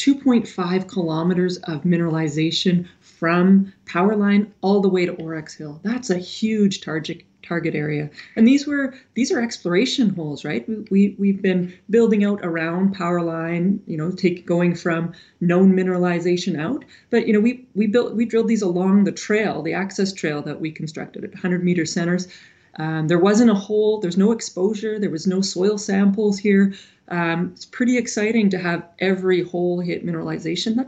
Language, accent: English, American